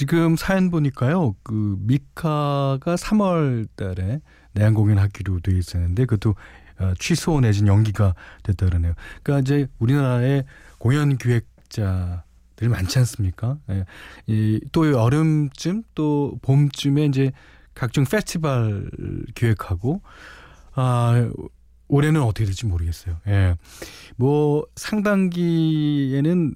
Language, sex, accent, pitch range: Korean, male, native, 95-145 Hz